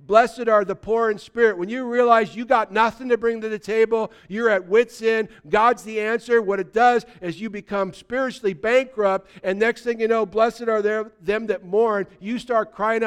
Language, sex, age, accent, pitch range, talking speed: English, male, 50-69, American, 160-210 Hz, 205 wpm